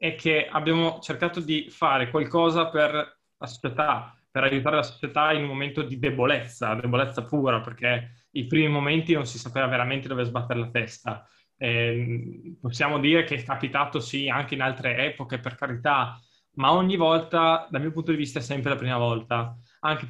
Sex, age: male, 20-39